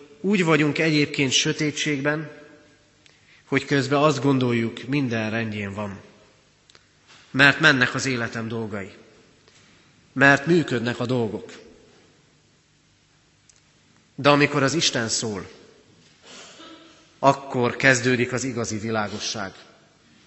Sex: male